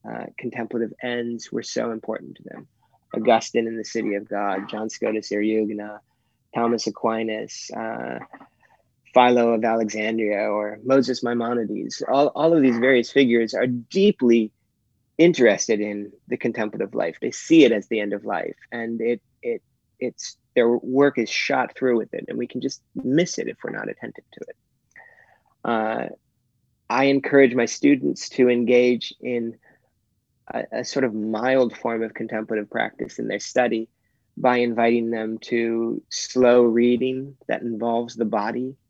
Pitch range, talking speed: 110-125 Hz, 150 wpm